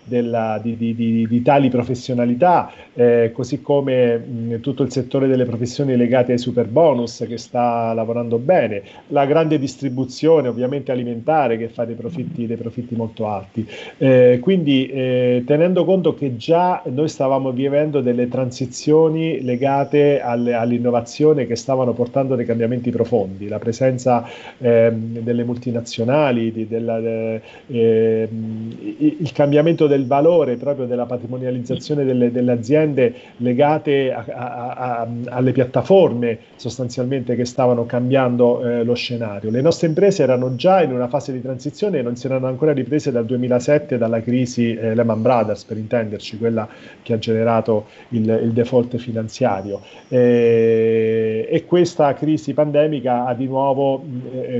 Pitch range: 115-140 Hz